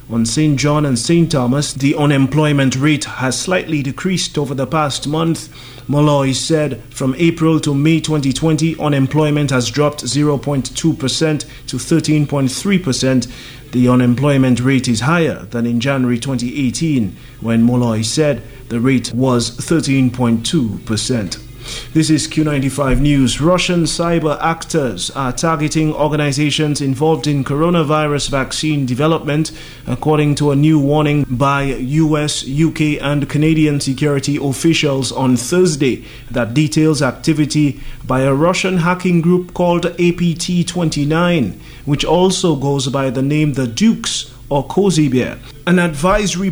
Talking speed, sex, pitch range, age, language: 125 wpm, male, 130-160 Hz, 30-49, English